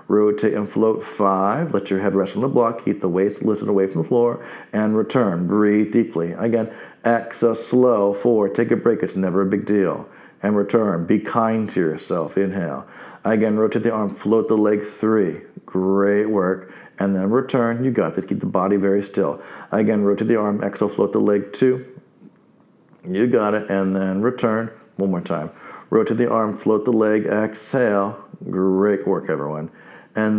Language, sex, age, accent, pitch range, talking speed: English, male, 50-69, American, 100-115 Hz, 180 wpm